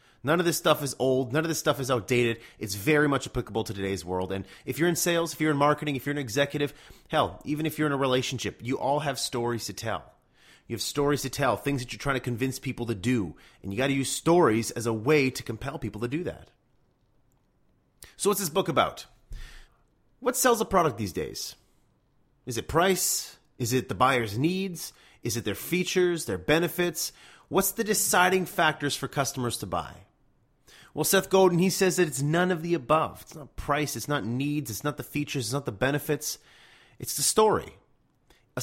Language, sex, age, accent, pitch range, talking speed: English, male, 30-49, American, 125-165 Hz, 210 wpm